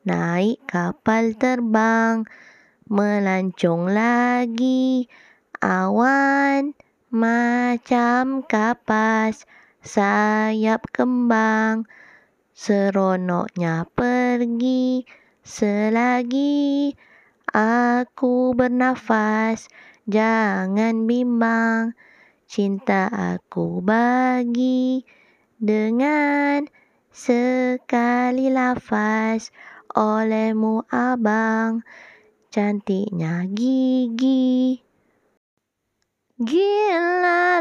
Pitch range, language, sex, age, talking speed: 225-280 Hz, English, female, 20-39, 45 wpm